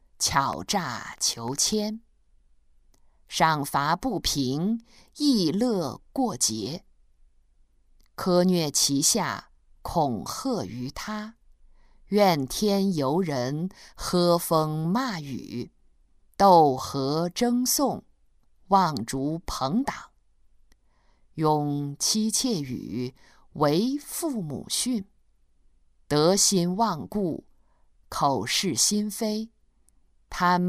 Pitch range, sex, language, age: 130-215 Hz, female, Chinese, 50-69